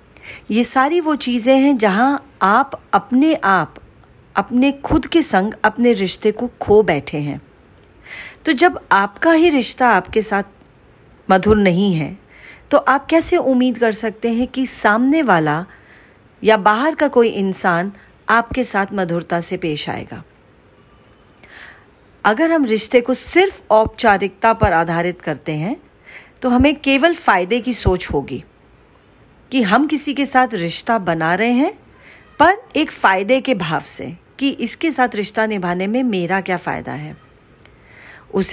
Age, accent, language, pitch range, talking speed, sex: 40-59, Indian, English, 190-270 Hz, 145 wpm, female